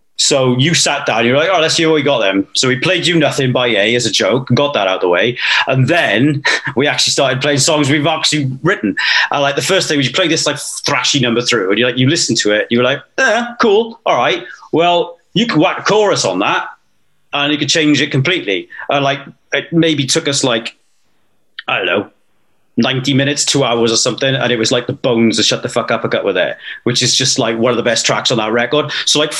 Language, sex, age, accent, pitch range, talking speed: English, male, 30-49, British, 120-150 Hz, 260 wpm